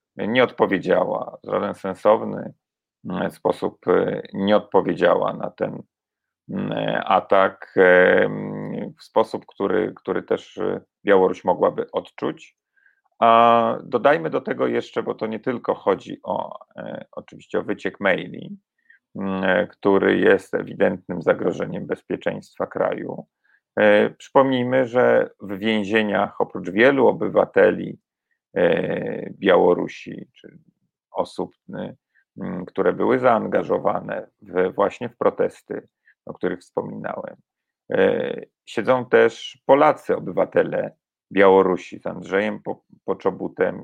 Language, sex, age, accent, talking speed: Polish, male, 40-59, native, 95 wpm